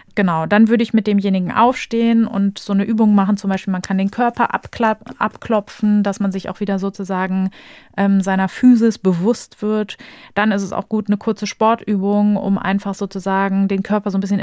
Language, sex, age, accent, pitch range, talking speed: German, female, 30-49, German, 190-220 Hz, 195 wpm